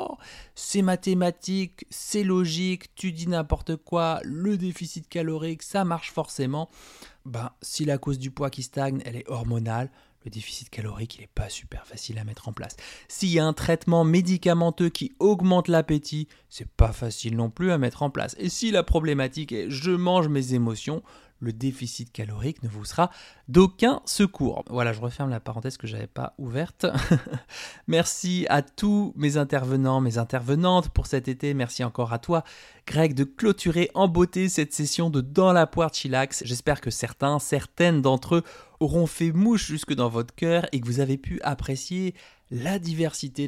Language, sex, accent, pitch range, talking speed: French, male, French, 125-170 Hz, 180 wpm